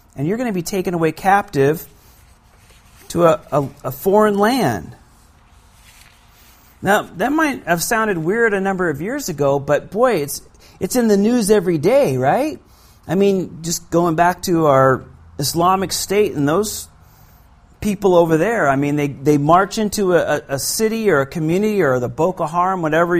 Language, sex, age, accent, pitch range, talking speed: Finnish, male, 40-59, American, 150-200 Hz, 170 wpm